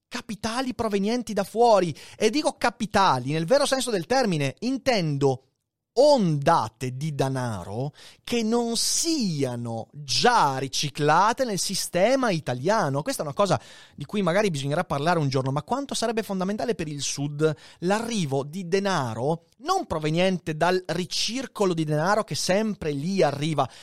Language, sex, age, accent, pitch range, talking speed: Italian, male, 30-49, native, 135-195 Hz, 140 wpm